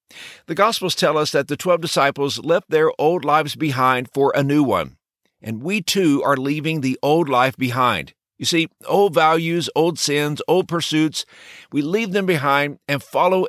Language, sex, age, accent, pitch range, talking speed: English, male, 60-79, American, 130-180 Hz, 180 wpm